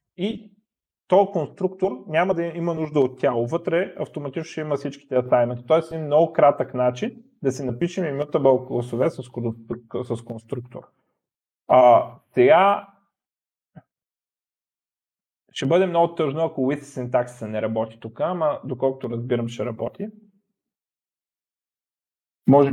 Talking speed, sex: 115 wpm, male